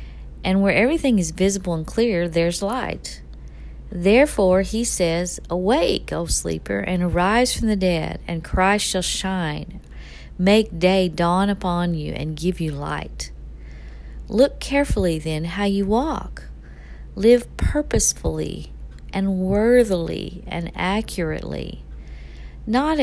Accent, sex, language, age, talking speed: American, female, English, 40-59, 120 wpm